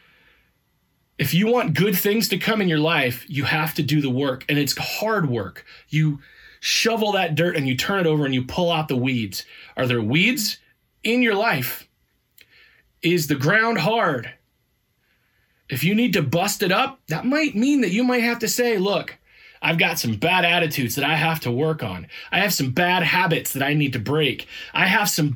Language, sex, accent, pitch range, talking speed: English, male, American, 145-195 Hz, 205 wpm